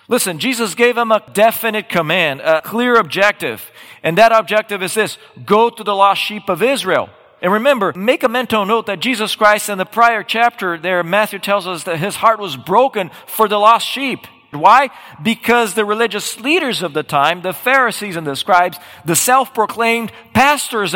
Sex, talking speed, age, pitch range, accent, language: male, 185 wpm, 40-59, 185-235 Hz, American, English